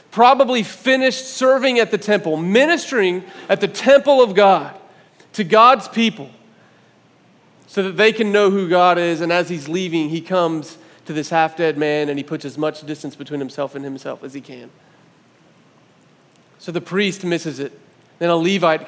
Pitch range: 155-205 Hz